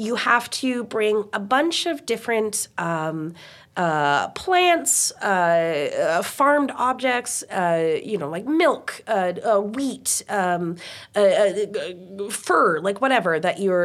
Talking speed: 140 wpm